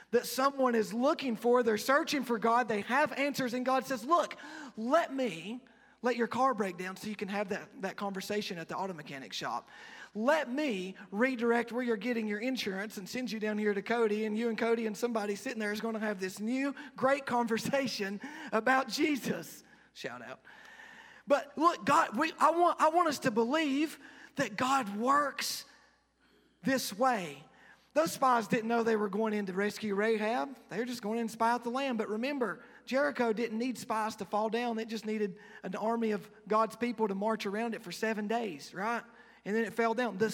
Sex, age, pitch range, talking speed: male, 30-49, 210-255 Hz, 205 wpm